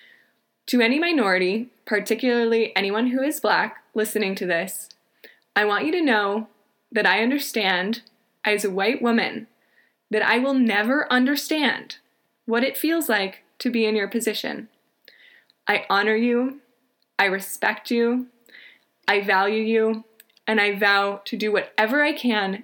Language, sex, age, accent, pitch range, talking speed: English, female, 20-39, American, 200-245 Hz, 145 wpm